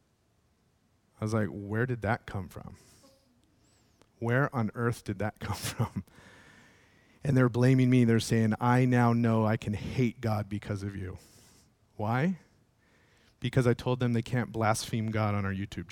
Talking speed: 160 wpm